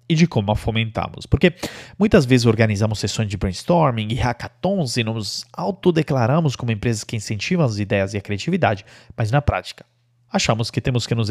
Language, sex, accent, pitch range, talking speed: Portuguese, male, Brazilian, 115-165 Hz, 180 wpm